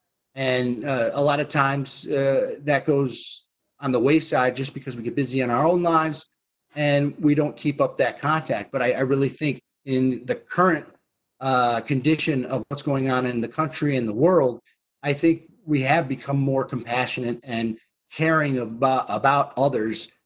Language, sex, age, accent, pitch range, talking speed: English, male, 30-49, American, 125-155 Hz, 180 wpm